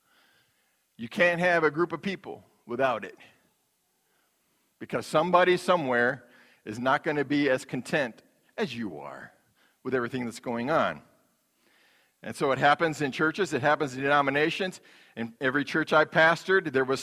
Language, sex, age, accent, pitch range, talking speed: English, male, 50-69, American, 135-190 Hz, 155 wpm